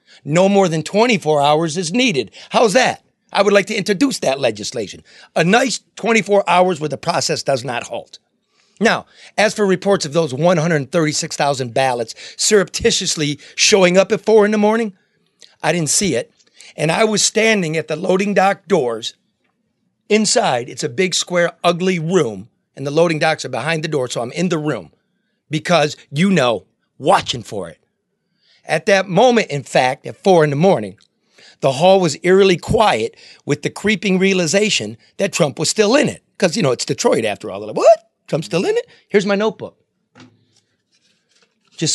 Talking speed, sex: 175 wpm, male